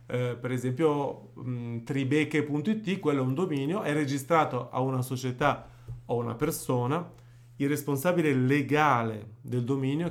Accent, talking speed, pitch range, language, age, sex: native, 130 wpm, 120-155 Hz, Italian, 30-49, male